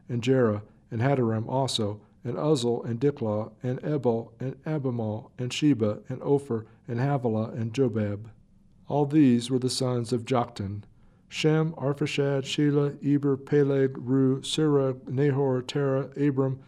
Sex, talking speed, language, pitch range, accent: male, 135 wpm, English, 115-145 Hz, American